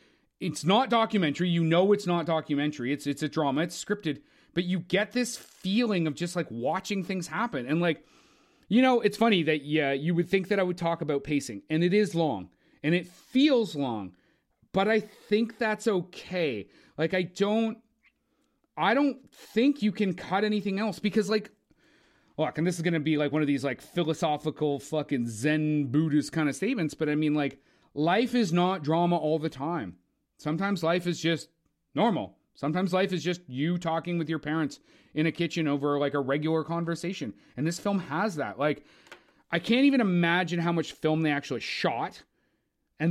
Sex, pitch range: male, 155-200 Hz